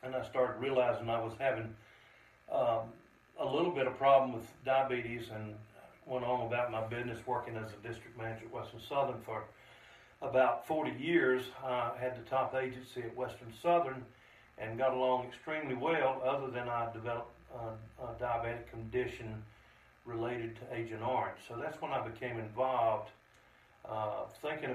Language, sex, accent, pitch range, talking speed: English, male, American, 115-130 Hz, 160 wpm